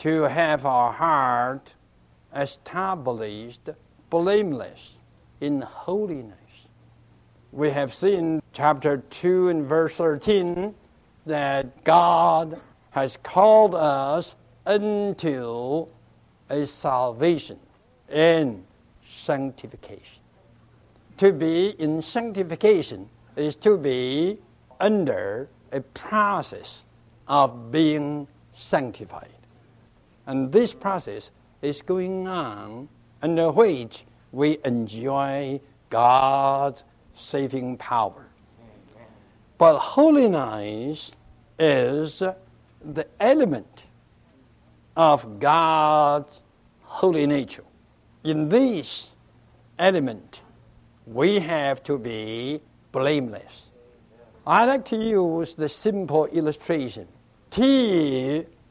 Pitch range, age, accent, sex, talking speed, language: 125-170 Hz, 60-79, American, male, 80 wpm, English